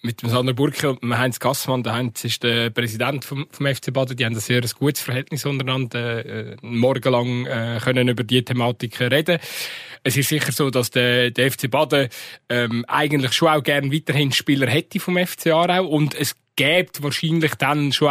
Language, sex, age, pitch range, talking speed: German, male, 20-39, 125-150 Hz, 185 wpm